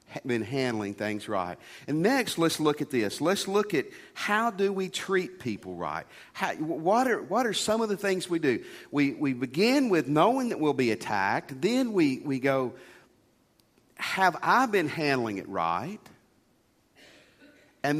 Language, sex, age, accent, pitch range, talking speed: English, male, 50-69, American, 115-175 Hz, 165 wpm